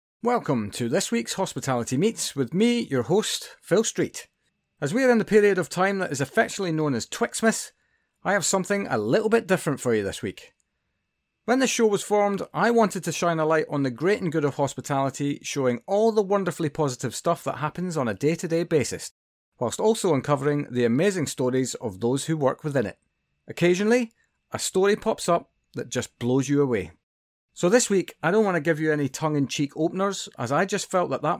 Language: English